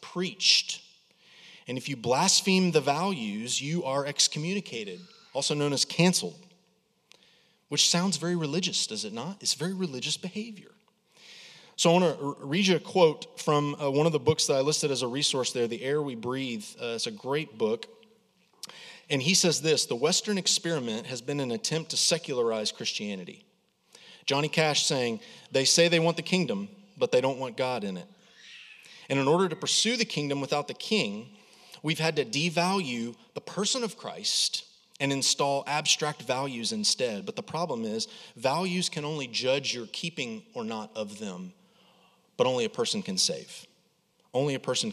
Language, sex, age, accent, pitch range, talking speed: English, male, 30-49, American, 145-205 Hz, 170 wpm